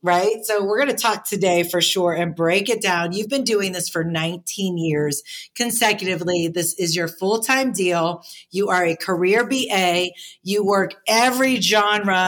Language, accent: English, American